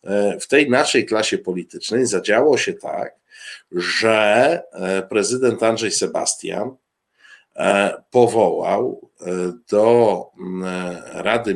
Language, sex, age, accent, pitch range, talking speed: Polish, male, 50-69, native, 105-140 Hz, 80 wpm